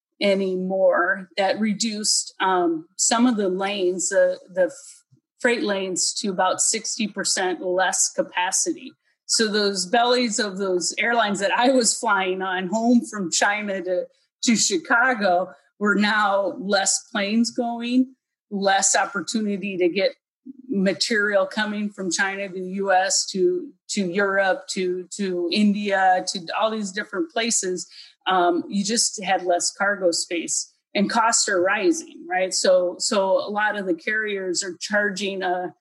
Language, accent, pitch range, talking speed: English, American, 185-235 Hz, 140 wpm